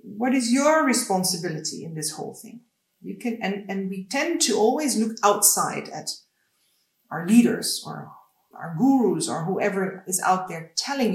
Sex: female